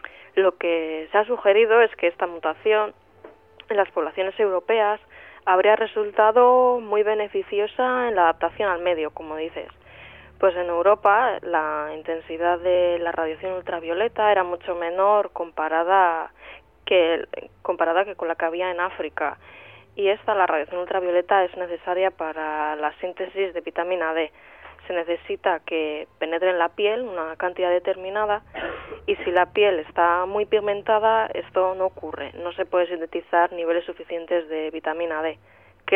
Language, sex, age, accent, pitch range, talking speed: Spanish, female, 20-39, Spanish, 165-205 Hz, 150 wpm